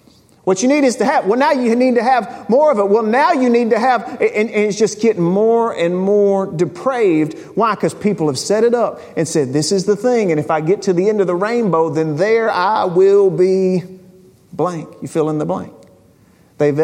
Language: English